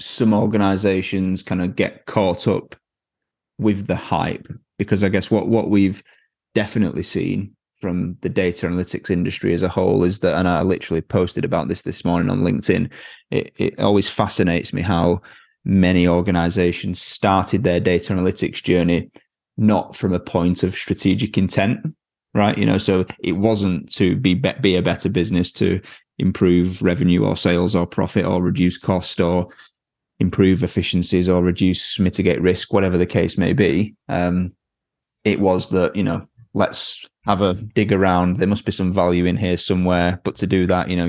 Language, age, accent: English, 20-39, British